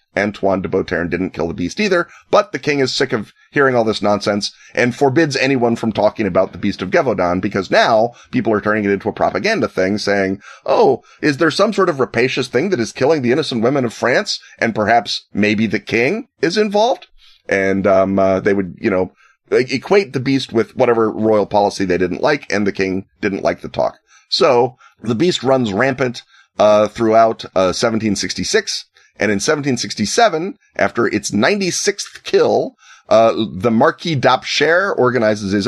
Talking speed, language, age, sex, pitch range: 185 wpm, English, 30-49, male, 100-130 Hz